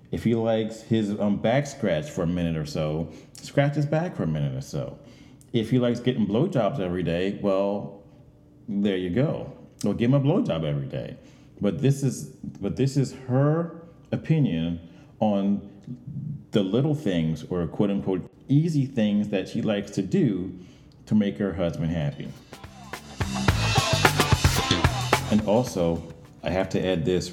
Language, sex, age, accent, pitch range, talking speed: English, male, 40-59, American, 85-130 Hz, 155 wpm